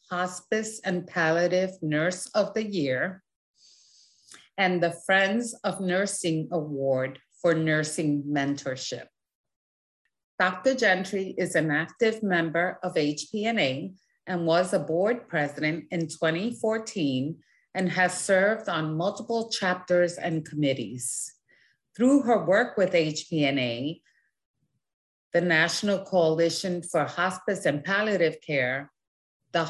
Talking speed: 105 wpm